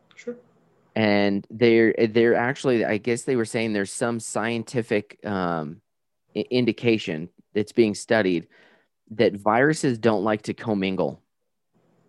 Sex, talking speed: male, 115 wpm